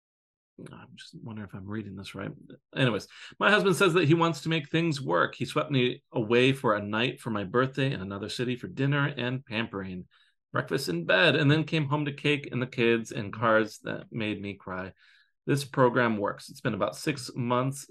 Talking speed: 210 wpm